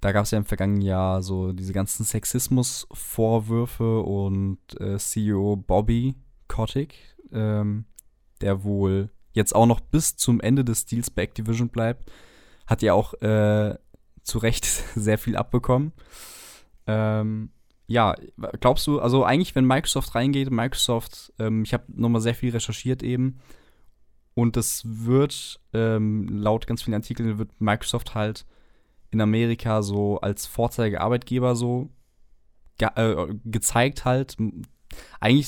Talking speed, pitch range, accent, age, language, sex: 135 wpm, 105-120 Hz, German, 20-39, German, male